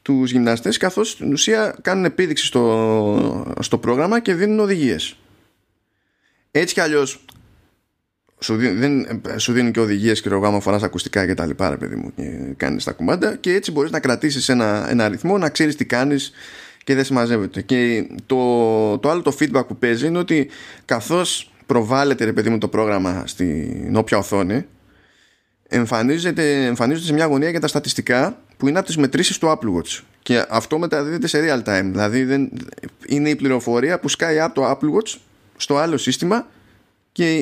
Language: Greek